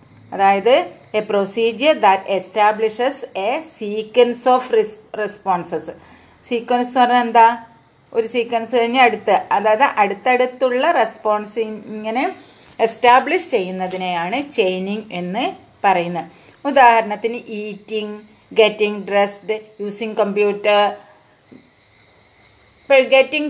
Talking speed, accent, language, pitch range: 85 wpm, native, Malayalam, 190-245 Hz